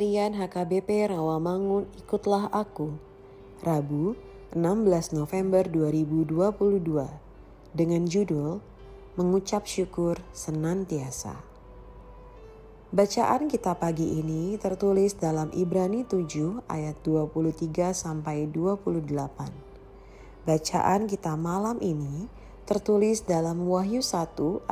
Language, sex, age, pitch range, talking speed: Indonesian, female, 30-49, 155-195 Hz, 80 wpm